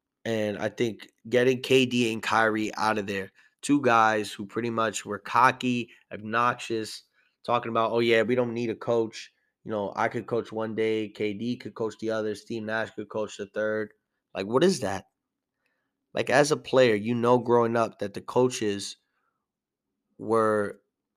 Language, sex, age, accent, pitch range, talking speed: English, male, 20-39, American, 105-120 Hz, 175 wpm